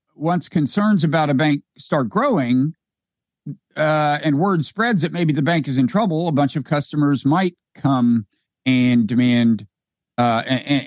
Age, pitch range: 50-69, 135-185 Hz